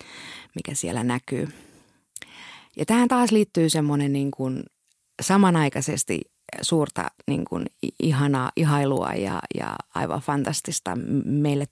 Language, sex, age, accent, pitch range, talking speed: Finnish, female, 30-49, native, 130-155 Hz, 100 wpm